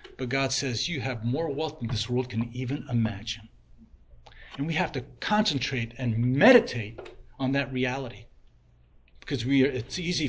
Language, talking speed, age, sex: English, 165 wpm, 40-59, male